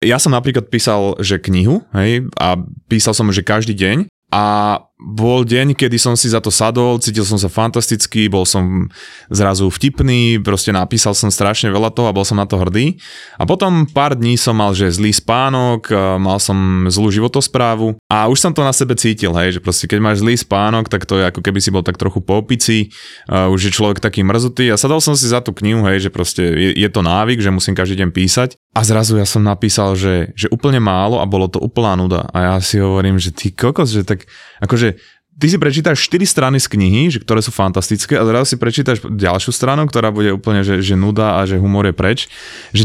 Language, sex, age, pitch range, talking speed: Slovak, male, 20-39, 100-125 Hz, 220 wpm